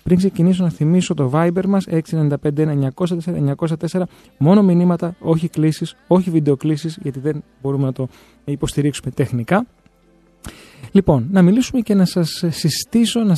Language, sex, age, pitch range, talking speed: Greek, male, 30-49, 135-175 Hz, 130 wpm